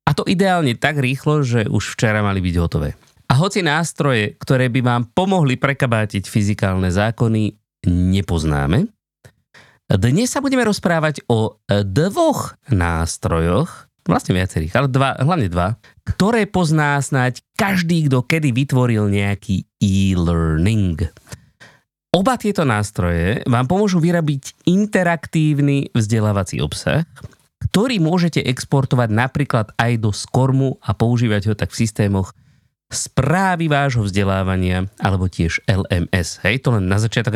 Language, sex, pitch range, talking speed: Slovak, male, 105-150 Hz, 125 wpm